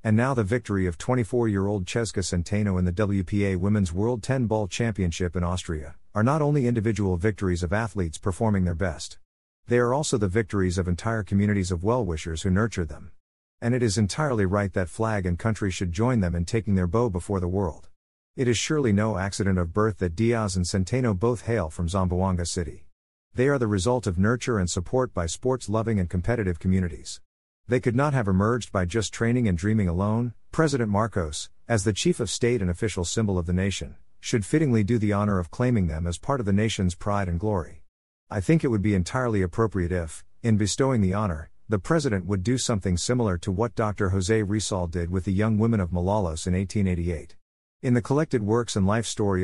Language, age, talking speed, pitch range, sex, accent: English, 50-69, 205 wpm, 90-115 Hz, male, American